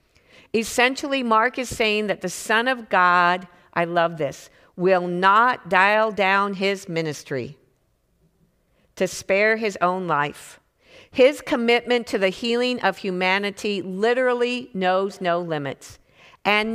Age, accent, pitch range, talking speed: 50-69, American, 160-220 Hz, 125 wpm